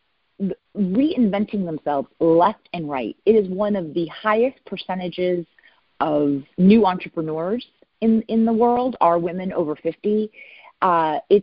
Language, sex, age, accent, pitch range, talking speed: English, female, 40-59, American, 165-215 Hz, 130 wpm